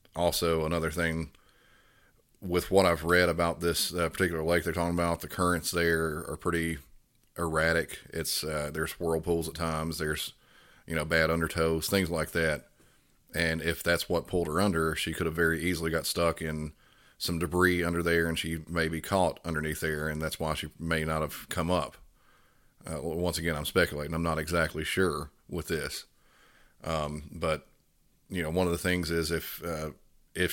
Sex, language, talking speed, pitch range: male, English, 185 wpm, 80-85 Hz